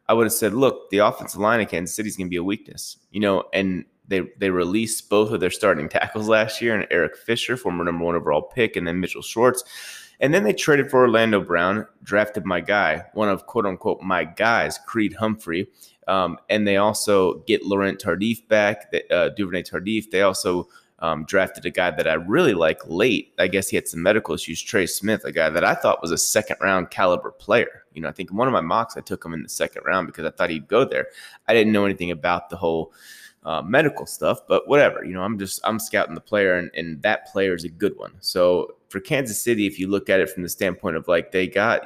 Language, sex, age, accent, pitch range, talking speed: English, male, 30-49, American, 90-110 Hz, 240 wpm